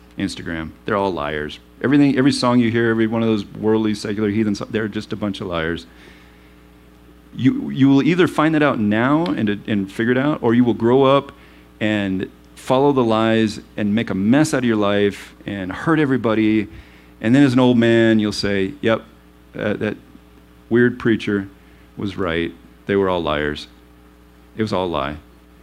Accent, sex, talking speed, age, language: American, male, 185 wpm, 40-59, English